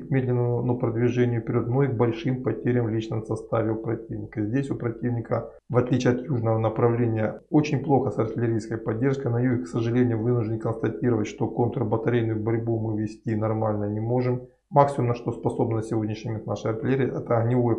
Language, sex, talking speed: Russian, male, 180 wpm